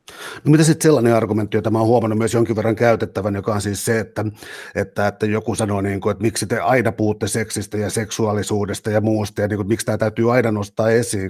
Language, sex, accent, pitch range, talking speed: Finnish, male, native, 110-125 Hz, 225 wpm